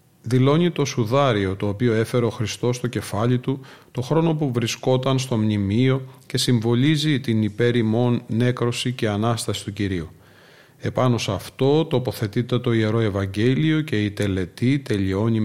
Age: 40-59